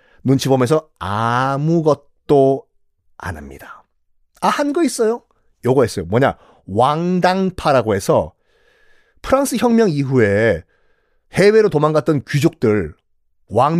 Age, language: 40-59, Korean